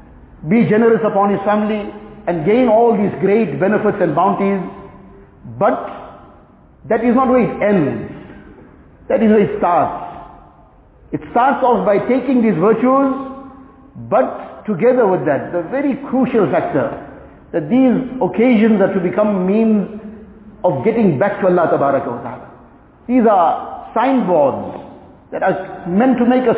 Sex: male